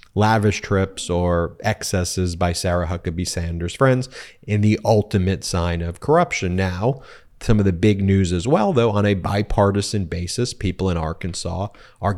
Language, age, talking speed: English, 30-49, 160 wpm